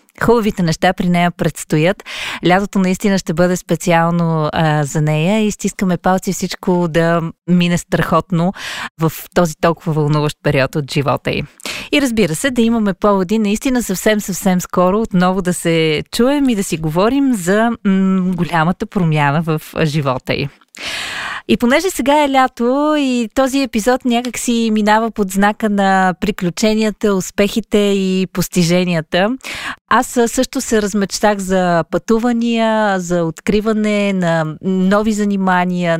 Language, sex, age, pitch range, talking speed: Bulgarian, female, 20-39, 170-220 Hz, 135 wpm